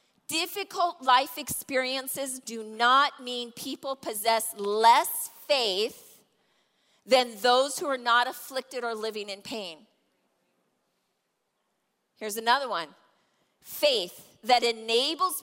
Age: 40-59